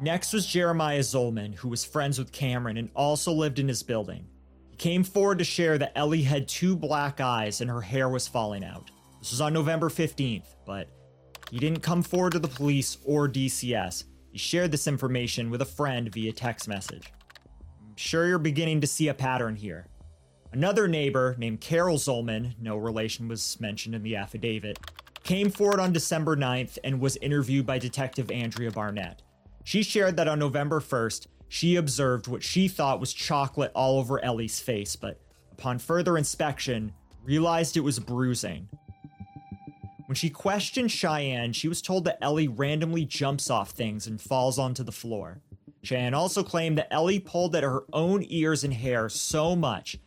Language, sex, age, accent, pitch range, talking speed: English, male, 30-49, American, 110-160 Hz, 175 wpm